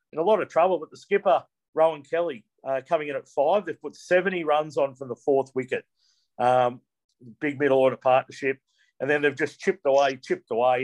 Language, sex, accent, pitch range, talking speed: English, male, Australian, 130-160 Hz, 205 wpm